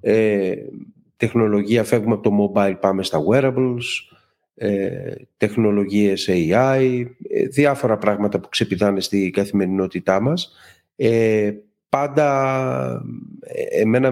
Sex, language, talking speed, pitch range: male, Greek, 100 wpm, 100-120 Hz